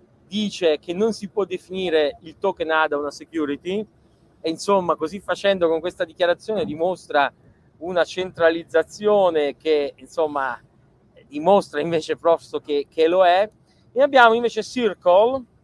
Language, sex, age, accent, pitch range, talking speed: Italian, male, 40-59, native, 155-210 Hz, 130 wpm